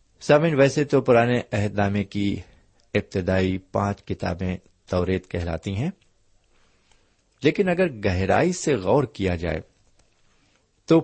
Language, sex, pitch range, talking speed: Urdu, male, 90-125 Hz, 115 wpm